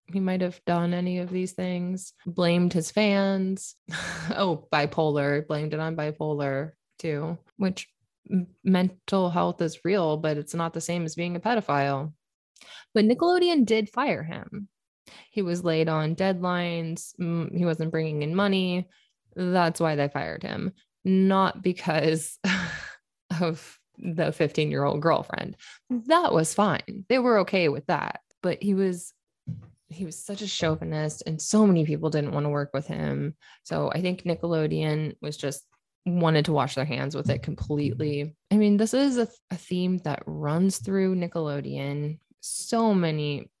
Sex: female